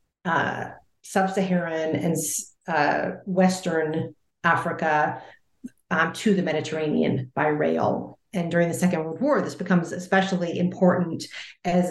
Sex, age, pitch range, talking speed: female, 40-59, 165-195 Hz, 115 wpm